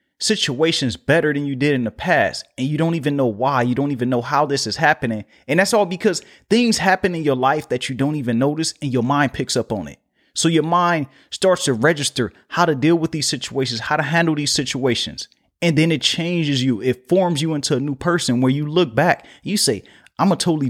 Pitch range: 130-170 Hz